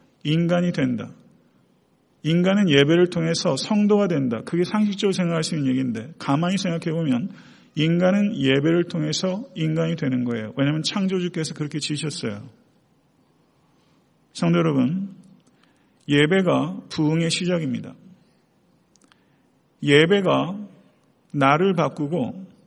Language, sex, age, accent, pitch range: Korean, male, 40-59, native, 145-185 Hz